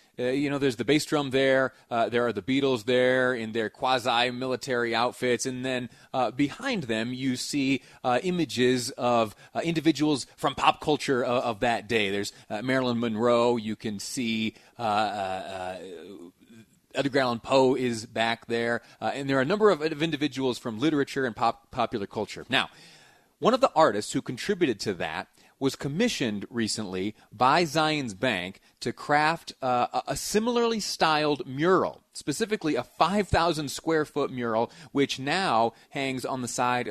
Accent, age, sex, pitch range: American, 30-49, male, 120-145 Hz